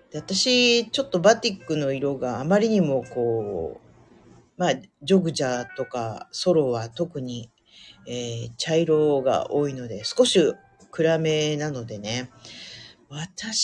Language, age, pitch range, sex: Japanese, 40-59, 130-190 Hz, female